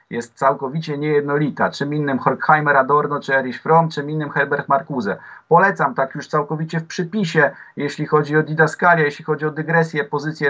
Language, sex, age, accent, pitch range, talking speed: Polish, male, 30-49, native, 145-180 Hz, 165 wpm